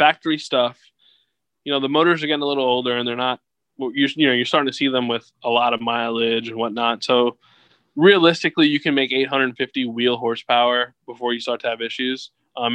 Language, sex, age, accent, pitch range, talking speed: English, male, 20-39, American, 120-135 Hz, 200 wpm